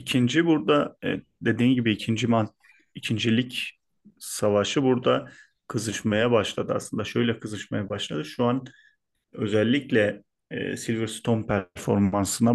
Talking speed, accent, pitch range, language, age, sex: 90 wpm, native, 100-120 Hz, Turkish, 40-59, male